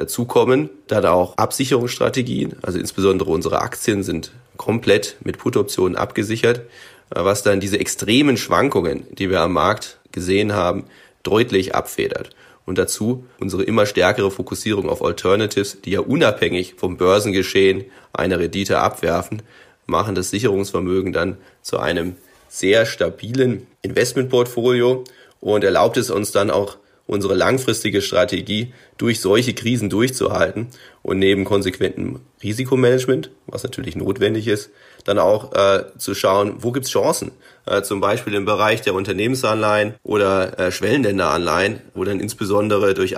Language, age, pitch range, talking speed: German, 30-49, 95-115 Hz, 130 wpm